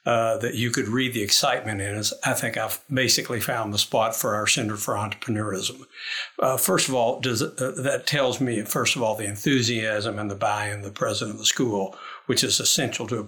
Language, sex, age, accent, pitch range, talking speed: English, male, 60-79, American, 110-130 Hz, 215 wpm